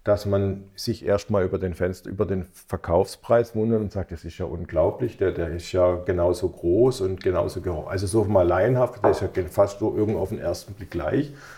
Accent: German